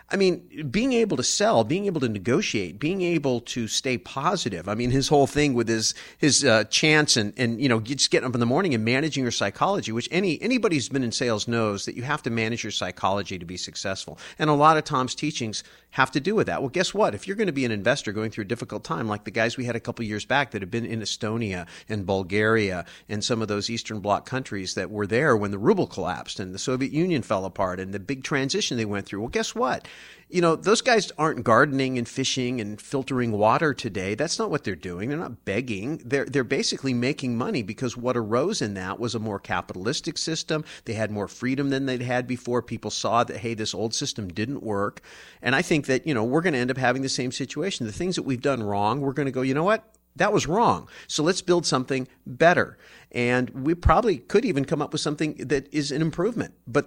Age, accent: 40-59, American